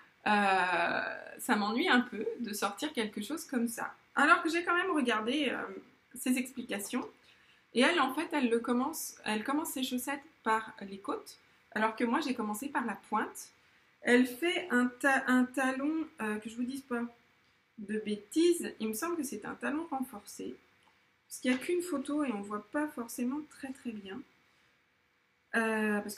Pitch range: 215-270 Hz